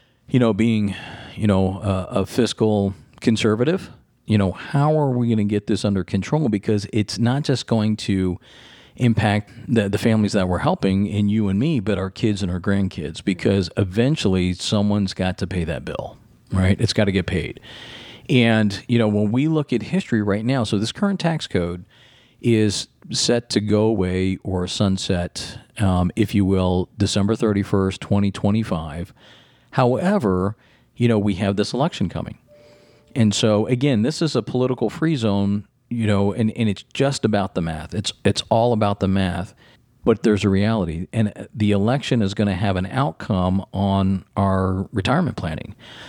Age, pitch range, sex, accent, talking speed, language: 40-59, 95-120 Hz, male, American, 175 wpm, English